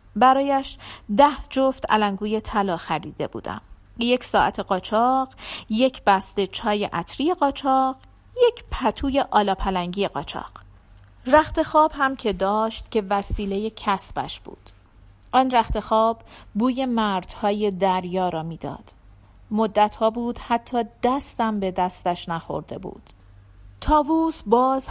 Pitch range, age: 180-255 Hz, 40-59